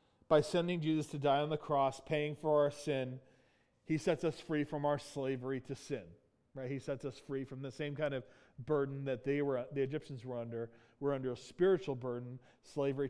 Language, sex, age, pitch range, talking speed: English, male, 40-59, 135-175 Hz, 205 wpm